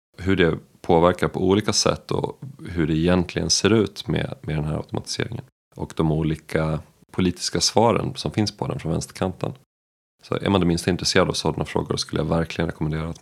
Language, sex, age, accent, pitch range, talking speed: Swedish, male, 30-49, native, 80-90 Hz, 190 wpm